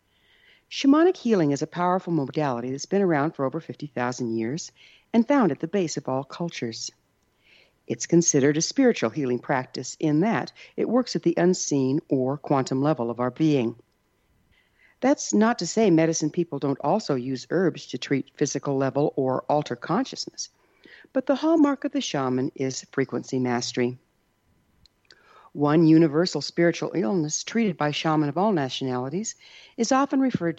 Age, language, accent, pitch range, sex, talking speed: 60-79, English, American, 140-195 Hz, female, 155 wpm